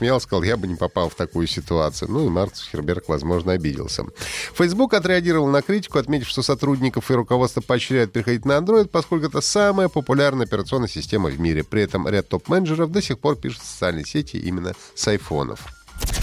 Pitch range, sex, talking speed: 90-130 Hz, male, 185 wpm